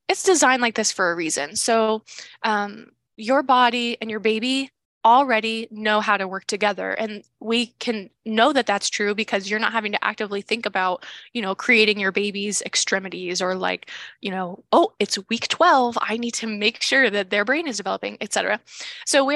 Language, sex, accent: English, female, American